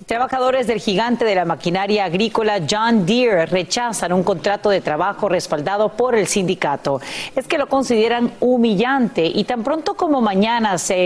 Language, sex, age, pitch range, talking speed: Spanish, female, 40-59, 180-245 Hz, 155 wpm